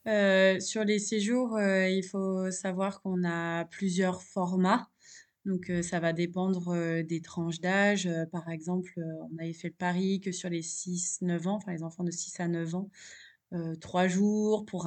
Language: French